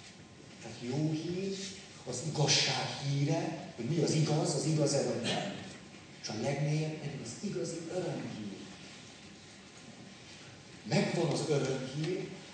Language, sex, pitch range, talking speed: Hungarian, male, 120-170 Hz, 95 wpm